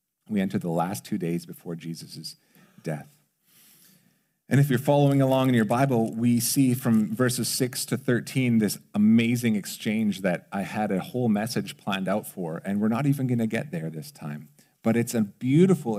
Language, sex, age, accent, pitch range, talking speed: English, male, 40-59, American, 110-170 Hz, 190 wpm